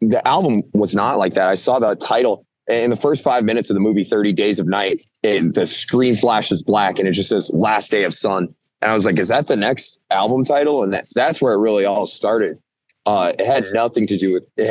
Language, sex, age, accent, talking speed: English, male, 30-49, American, 250 wpm